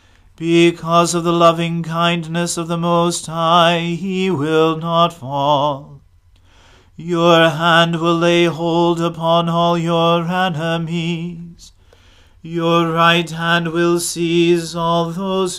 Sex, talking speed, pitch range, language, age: male, 110 wpm, 145-170 Hz, English, 40-59